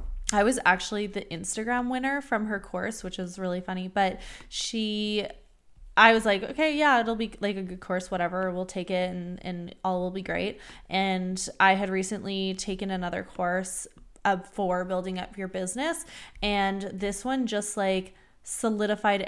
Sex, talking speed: female, 170 wpm